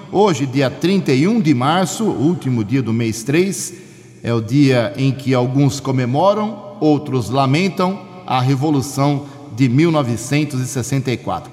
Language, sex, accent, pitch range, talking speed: Portuguese, male, Brazilian, 130-160 Hz, 120 wpm